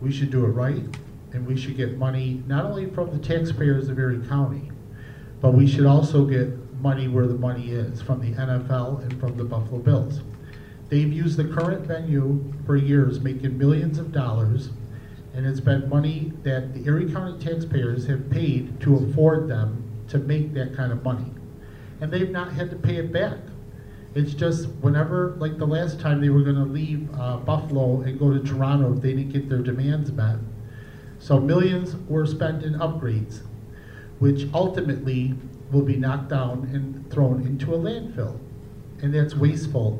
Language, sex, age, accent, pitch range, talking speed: English, male, 50-69, American, 125-145 Hz, 175 wpm